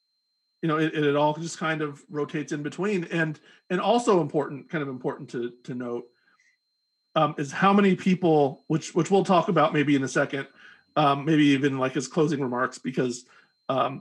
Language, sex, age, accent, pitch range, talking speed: English, male, 40-59, American, 135-165 Hz, 190 wpm